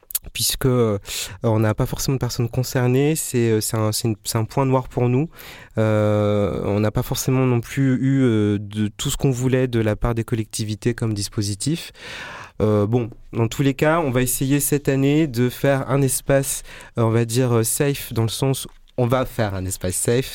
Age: 30-49